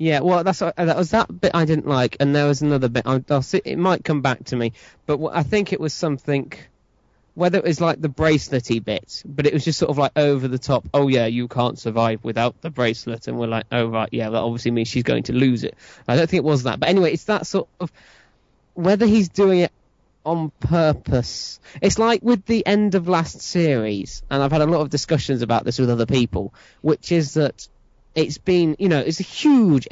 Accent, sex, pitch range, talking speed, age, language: British, male, 125-170 Hz, 225 wpm, 20-39, English